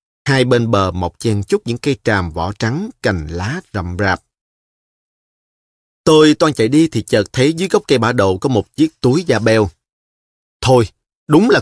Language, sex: Vietnamese, male